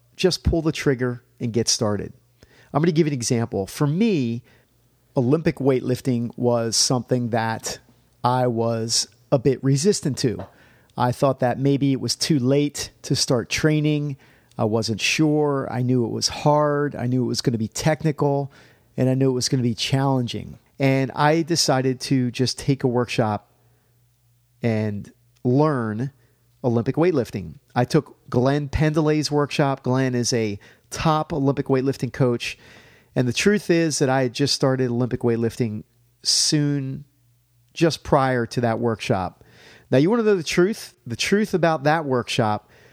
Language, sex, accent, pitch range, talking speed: English, male, American, 120-145 Hz, 160 wpm